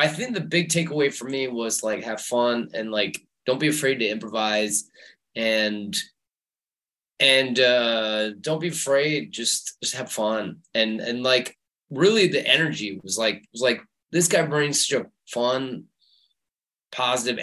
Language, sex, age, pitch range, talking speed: English, male, 20-39, 105-140 Hz, 155 wpm